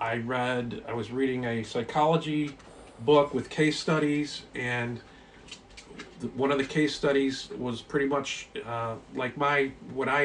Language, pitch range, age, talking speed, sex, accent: English, 115-140 Hz, 40-59, 145 wpm, male, American